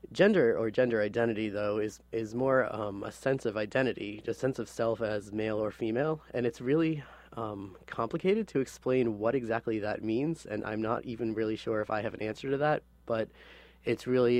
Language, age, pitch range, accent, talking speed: English, 20-39, 105-125 Hz, American, 200 wpm